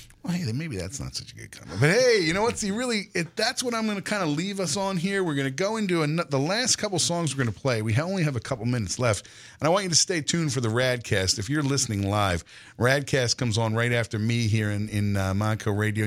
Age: 40-59